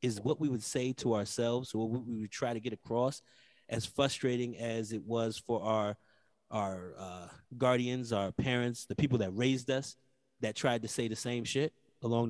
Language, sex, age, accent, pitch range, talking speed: English, male, 30-49, American, 115-135 Hz, 190 wpm